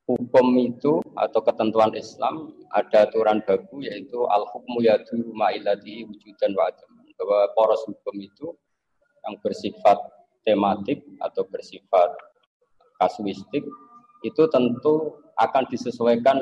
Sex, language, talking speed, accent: male, Indonesian, 105 wpm, native